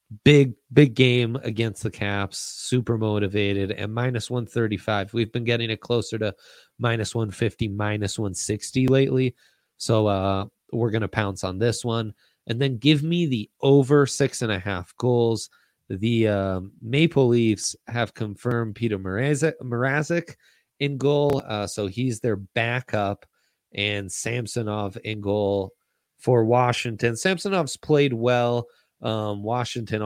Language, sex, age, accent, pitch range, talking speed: English, male, 30-49, American, 100-120 Hz, 135 wpm